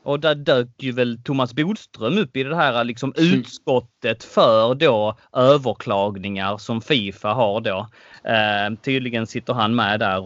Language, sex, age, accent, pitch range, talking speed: Swedish, male, 30-49, native, 110-150 Hz, 150 wpm